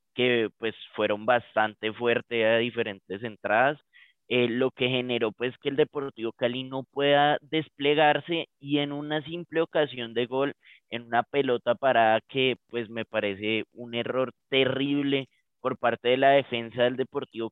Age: 20-39